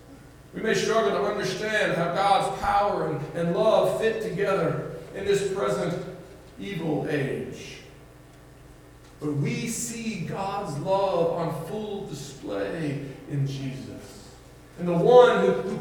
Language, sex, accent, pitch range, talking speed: English, male, American, 170-265 Hz, 125 wpm